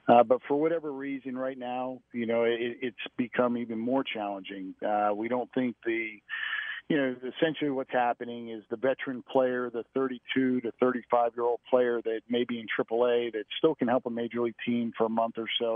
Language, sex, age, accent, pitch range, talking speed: English, male, 50-69, American, 115-135 Hz, 200 wpm